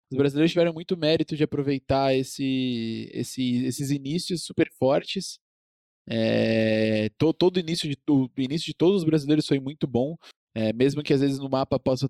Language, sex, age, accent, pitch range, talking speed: Portuguese, male, 20-39, Brazilian, 135-185 Hz, 135 wpm